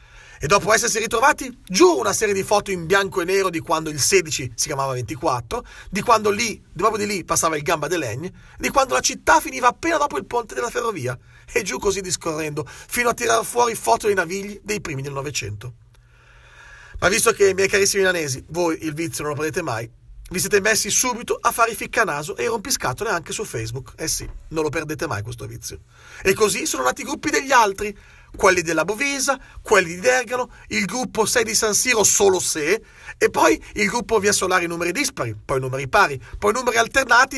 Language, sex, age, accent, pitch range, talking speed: Italian, male, 40-59, native, 155-230 Hz, 205 wpm